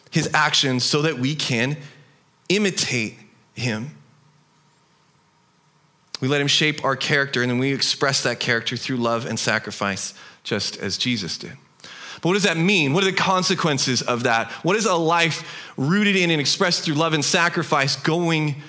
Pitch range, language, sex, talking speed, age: 135-170 Hz, English, male, 165 wpm, 30-49